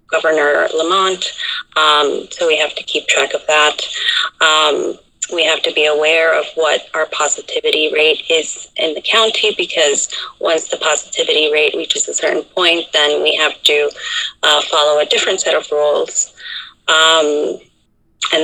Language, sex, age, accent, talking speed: English, female, 30-49, American, 155 wpm